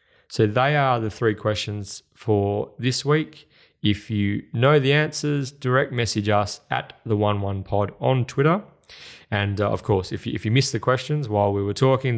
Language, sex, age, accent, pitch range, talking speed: English, male, 20-39, Australian, 100-130 Hz, 175 wpm